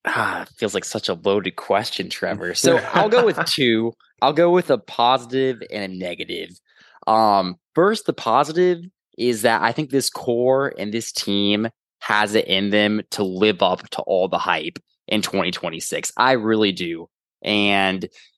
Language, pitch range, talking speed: English, 105-140 Hz, 165 wpm